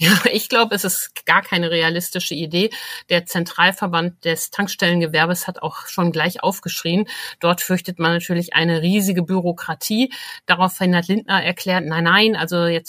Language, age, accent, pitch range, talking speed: German, 50-69, German, 155-185 Hz, 155 wpm